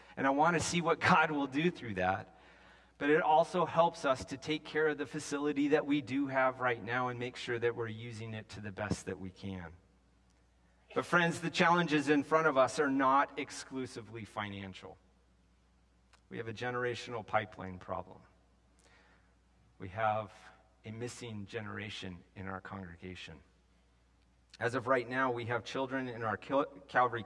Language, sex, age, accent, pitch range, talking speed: English, male, 40-59, American, 95-140 Hz, 170 wpm